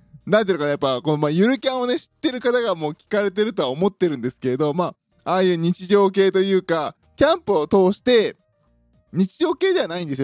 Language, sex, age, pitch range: Japanese, male, 20-39, 160-245 Hz